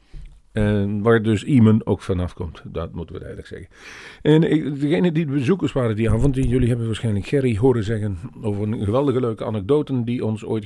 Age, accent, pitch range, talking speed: 50-69, Dutch, 95-130 Hz, 195 wpm